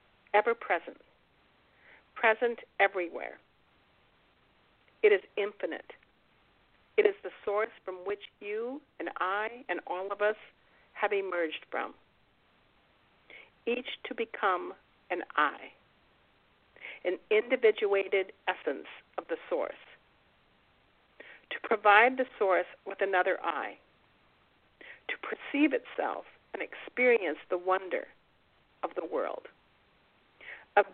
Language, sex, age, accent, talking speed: English, female, 50-69, American, 100 wpm